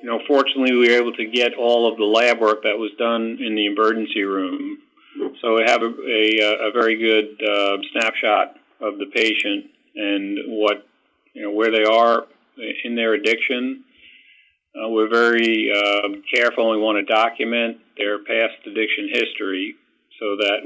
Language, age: English, 50-69